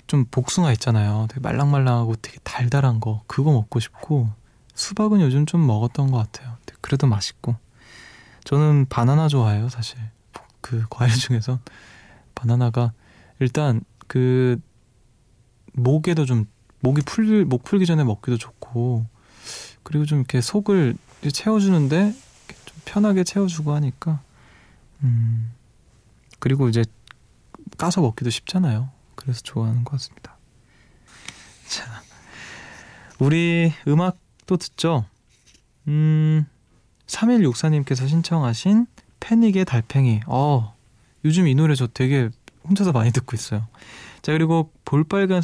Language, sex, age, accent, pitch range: Korean, male, 20-39, native, 115-155 Hz